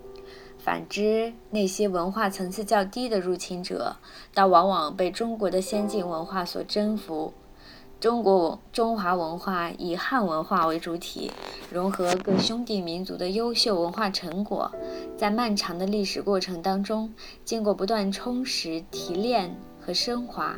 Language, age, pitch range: Chinese, 20-39, 170-215 Hz